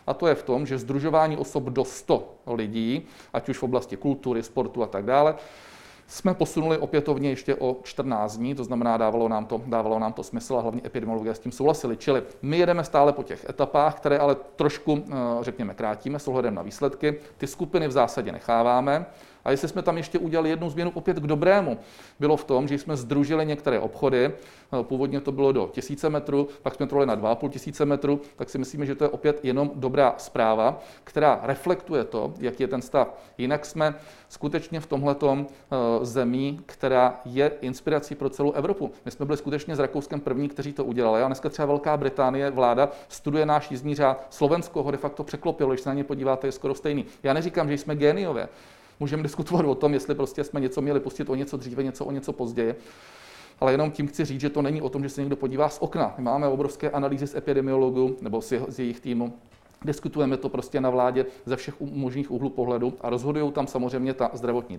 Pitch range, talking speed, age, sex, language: 130-150 Hz, 200 wpm, 40-59, male, Czech